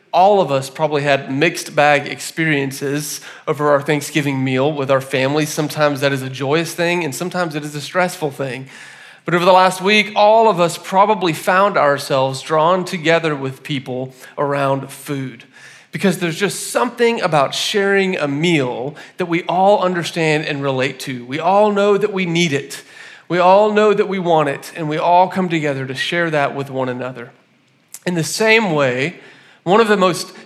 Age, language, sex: 40-59, English, male